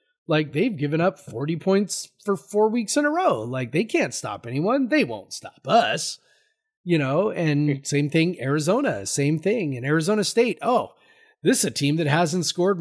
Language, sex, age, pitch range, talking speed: English, male, 30-49, 135-175 Hz, 185 wpm